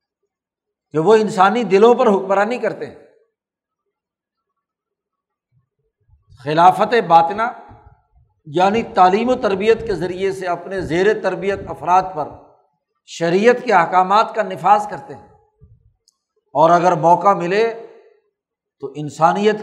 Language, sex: Urdu, male